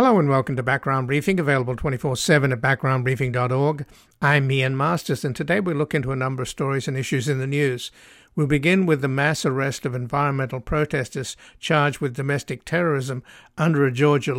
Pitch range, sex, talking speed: 130-150 Hz, male, 180 wpm